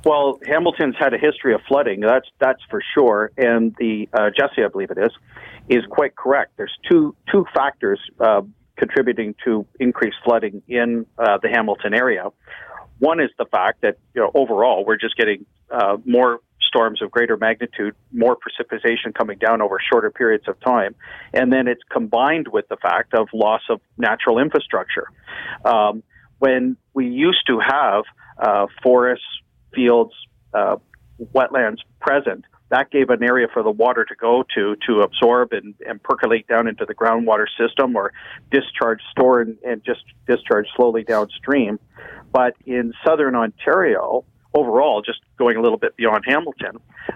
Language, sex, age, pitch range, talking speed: English, male, 50-69, 115-140 Hz, 160 wpm